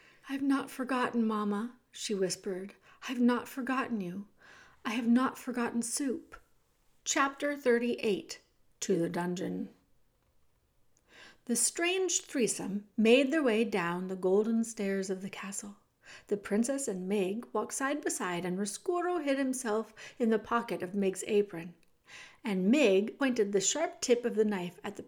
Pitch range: 205-275 Hz